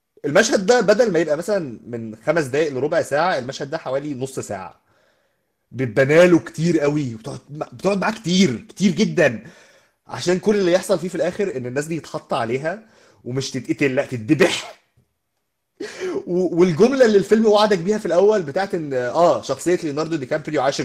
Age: 20-39